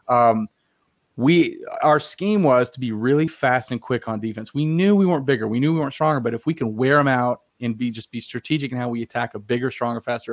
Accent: American